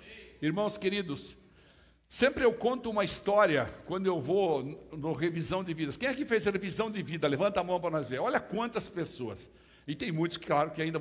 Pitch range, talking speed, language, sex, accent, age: 155-220 Hz, 195 wpm, Portuguese, male, Brazilian, 60-79